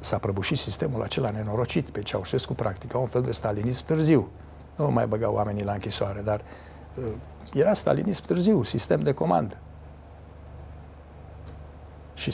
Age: 60-79